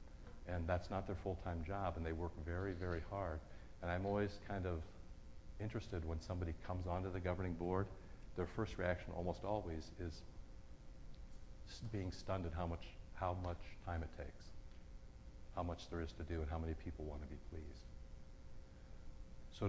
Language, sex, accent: English, male, American